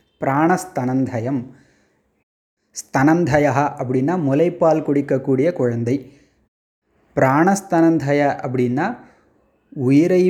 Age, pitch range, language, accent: 20-39, 130-160 Hz, Tamil, native